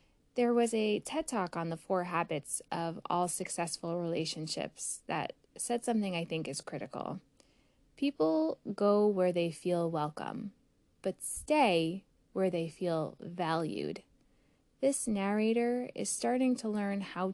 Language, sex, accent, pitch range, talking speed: English, female, American, 175-220 Hz, 135 wpm